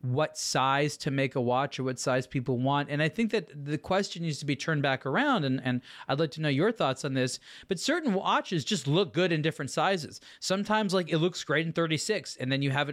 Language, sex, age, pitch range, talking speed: English, male, 30-49, 140-180 Hz, 245 wpm